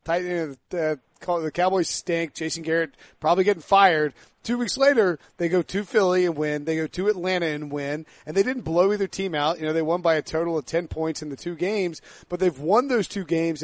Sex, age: male, 30-49